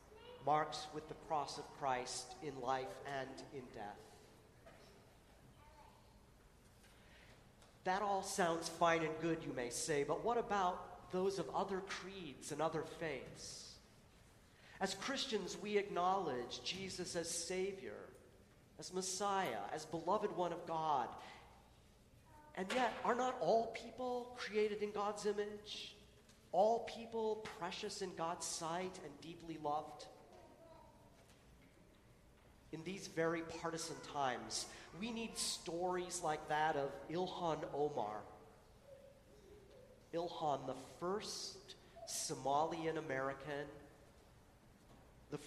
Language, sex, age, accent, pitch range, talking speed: English, male, 40-59, American, 150-190 Hz, 105 wpm